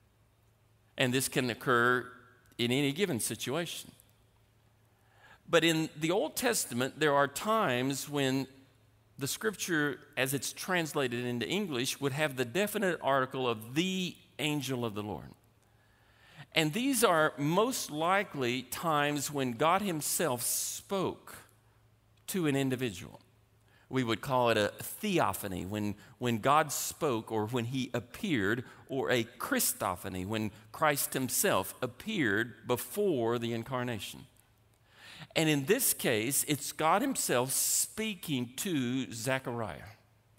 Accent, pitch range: American, 115-155 Hz